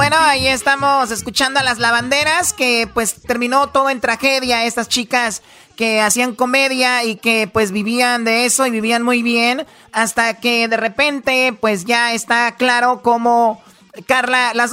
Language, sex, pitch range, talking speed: Spanish, male, 230-270 Hz, 160 wpm